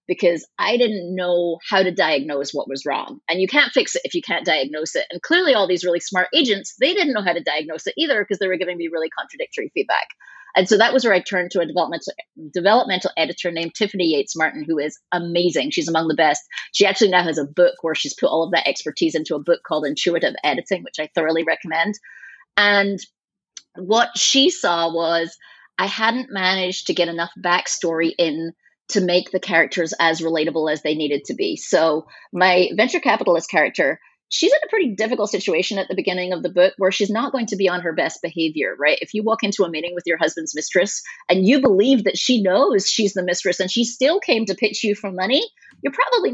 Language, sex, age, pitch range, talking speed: English, female, 30-49, 165-225 Hz, 220 wpm